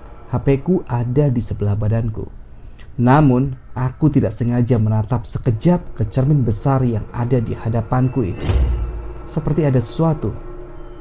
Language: Indonesian